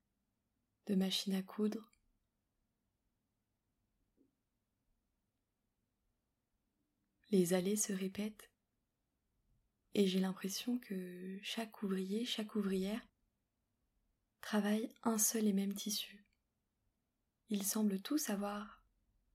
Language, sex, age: French, female, 20-39